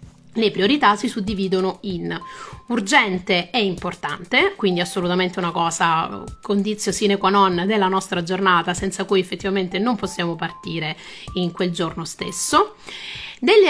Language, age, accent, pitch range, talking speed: Italian, 30-49, native, 180-215 Hz, 130 wpm